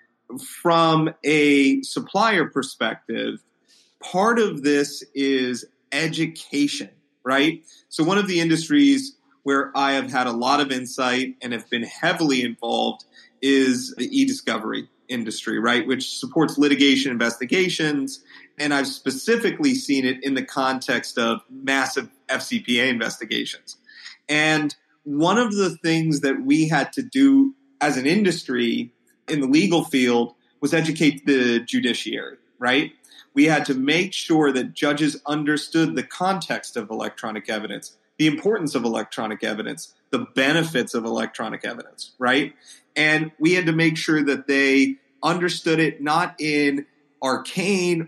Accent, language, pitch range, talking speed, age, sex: American, English, 135-170 Hz, 135 wpm, 30-49, male